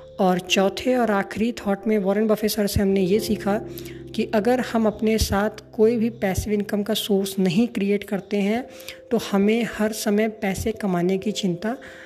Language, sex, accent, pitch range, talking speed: Hindi, female, native, 195-225 Hz, 180 wpm